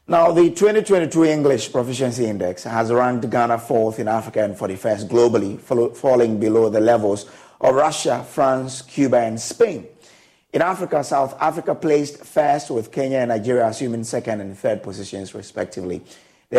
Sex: male